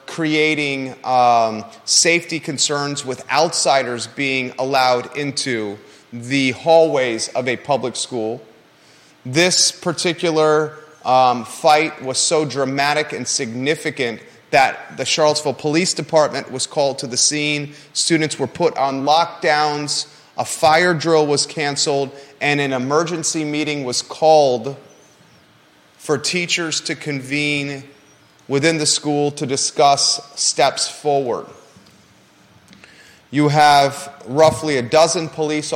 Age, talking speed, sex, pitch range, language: 30-49, 110 wpm, male, 135-155 Hz, English